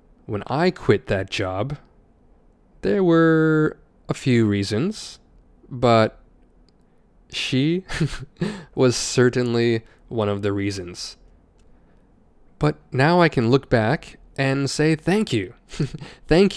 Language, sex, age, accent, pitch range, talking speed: English, male, 20-39, American, 110-145 Hz, 105 wpm